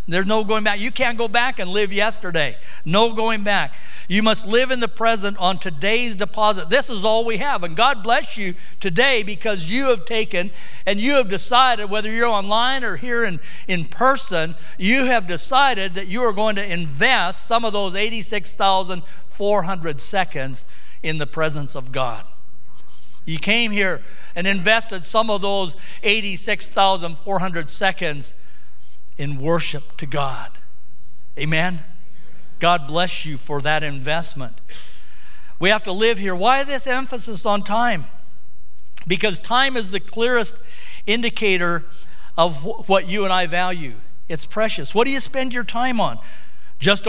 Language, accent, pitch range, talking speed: English, American, 155-220 Hz, 155 wpm